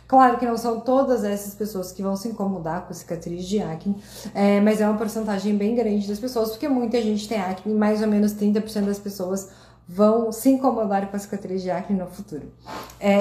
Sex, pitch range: female, 210-250 Hz